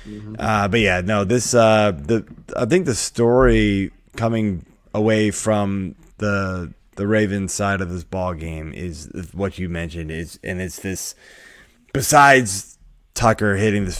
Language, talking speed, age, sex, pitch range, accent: English, 145 wpm, 20-39, male, 95-130 Hz, American